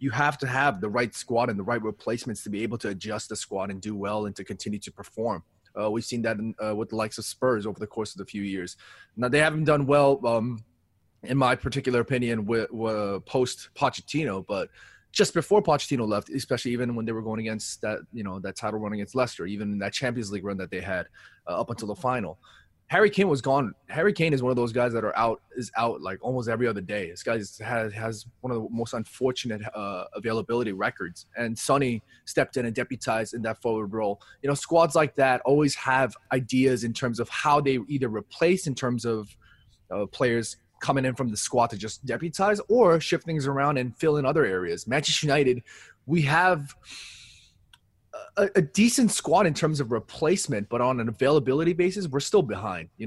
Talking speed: 220 wpm